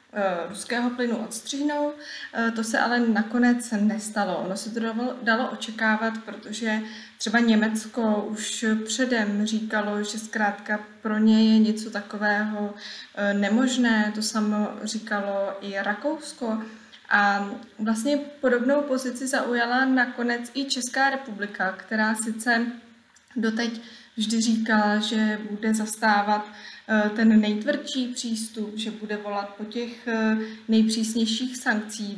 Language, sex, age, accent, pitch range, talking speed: Czech, female, 20-39, native, 210-235 Hz, 110 wpm